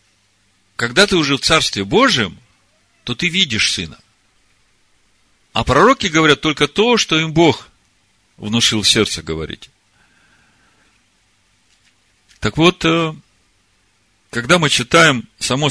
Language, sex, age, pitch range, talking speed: Russian, male, 50-69, 95-135 Hz, 105 wpm